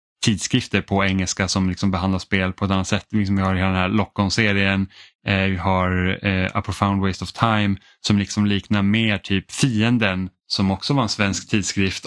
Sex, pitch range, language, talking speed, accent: male, 95-105 Hz, Swedish, 185 wpm, Norwegian